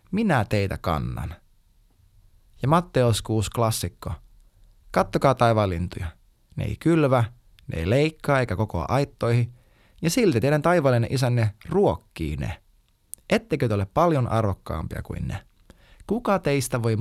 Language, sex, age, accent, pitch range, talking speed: Finnish, male, 20-39, native, 100-150 Hz, 125 wpm